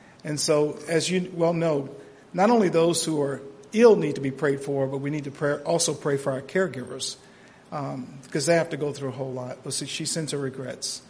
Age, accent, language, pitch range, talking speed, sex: 50-69, American, English, 140-170 Hz, 230 wpm, male